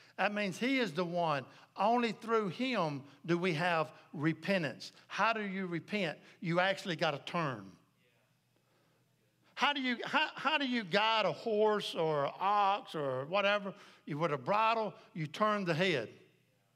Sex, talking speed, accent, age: male, 160 wpm, American, 60-79